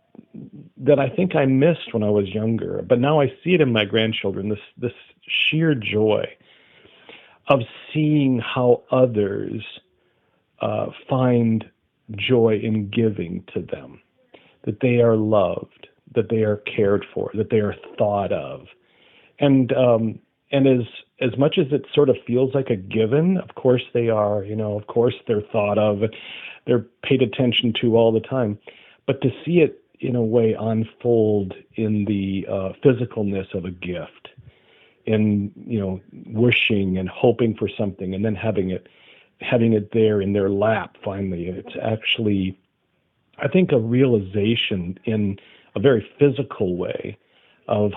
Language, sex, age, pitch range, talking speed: English, male, 40-59, 100-120 Hz, 155 wpm